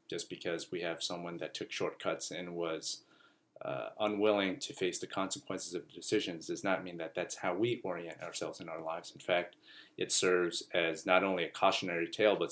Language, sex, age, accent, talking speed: English, male, 30-49, American, 200 wpm